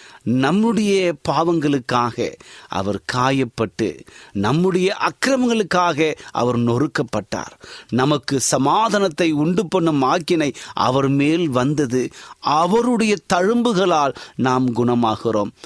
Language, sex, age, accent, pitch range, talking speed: Tamil, male, 30-49, native, 115-160 Hz, 75 wpm